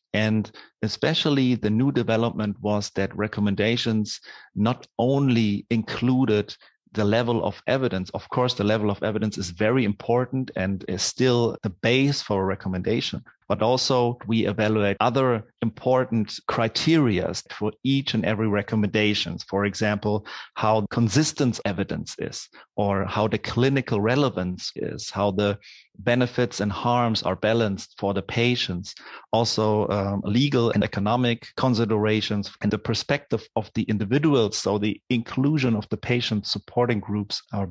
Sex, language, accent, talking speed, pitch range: male, English, German, 140 wpm, 105-125 Hz